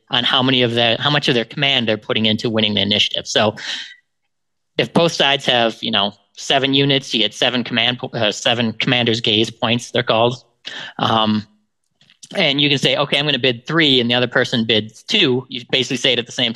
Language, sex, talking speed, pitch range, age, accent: English, male, 220 wpm, 115-140 Hz, 30-49, American